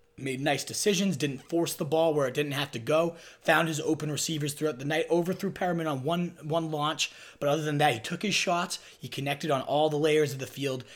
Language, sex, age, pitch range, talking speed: English, male, 30-49, 125-155 Hz, 235 wpm